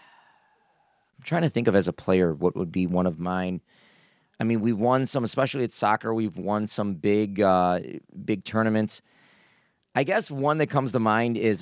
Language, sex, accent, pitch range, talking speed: English, male, American, 105-130 Hz, 190 wpm